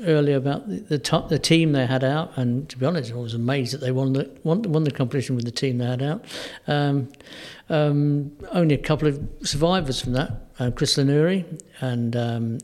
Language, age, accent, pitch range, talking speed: English, 50-69, British, 130-155 Hz, 210 wpm